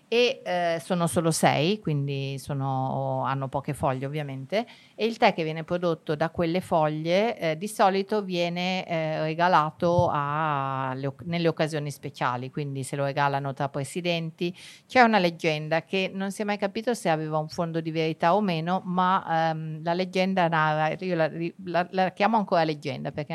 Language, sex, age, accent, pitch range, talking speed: Italian, female, 50-69, native, 155-185 Hz, 170 wpm